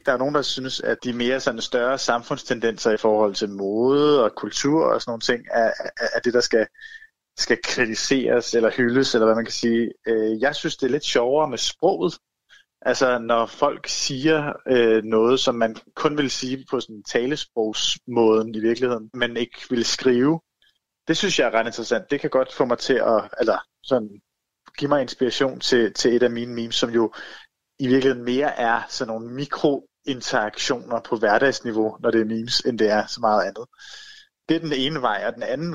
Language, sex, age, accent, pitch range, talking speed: Danish, male, 30-49, native, 115-140 Hz, 195 wpm